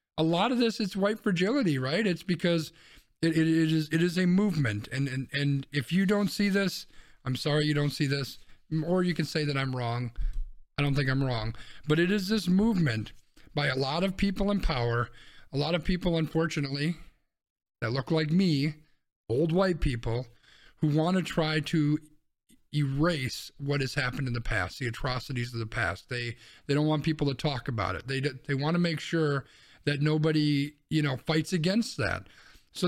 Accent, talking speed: American, 195 wpm